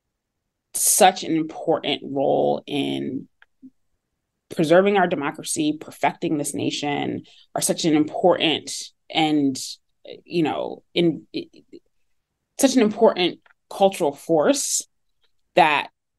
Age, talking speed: 20-39, 95 wpm